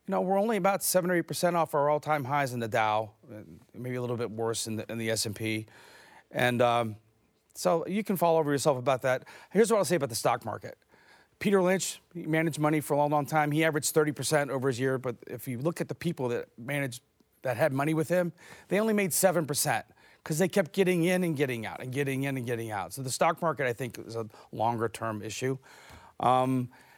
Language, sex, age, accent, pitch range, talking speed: English, male, 30-49, American, 125-160 Hz, 220 wpm